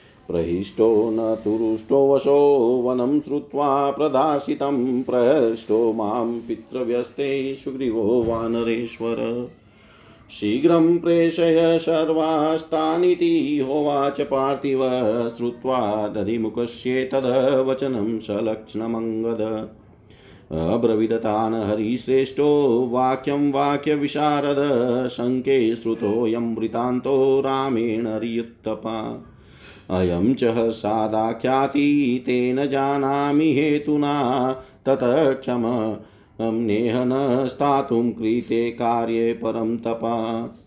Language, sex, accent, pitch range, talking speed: Hindi, male, native, 115-140 Hz, 65 wpm